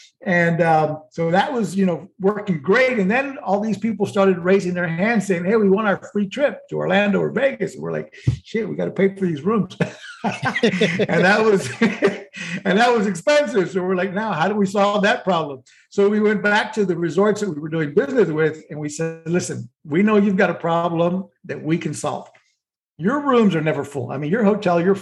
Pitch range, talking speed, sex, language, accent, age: 170-210 Hz, 225 wpm, male, English, American, 60-79